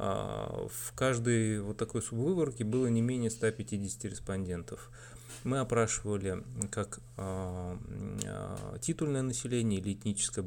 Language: Russian